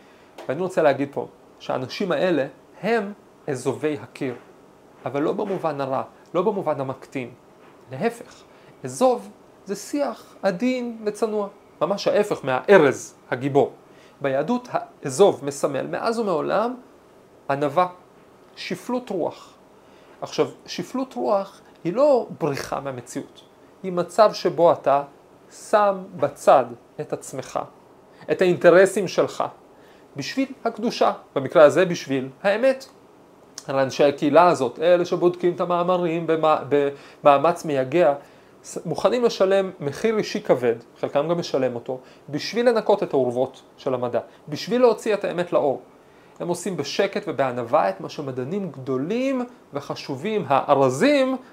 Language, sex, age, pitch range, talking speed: Hebrew, male, 40-59, 145-220 Hz, 115 wpm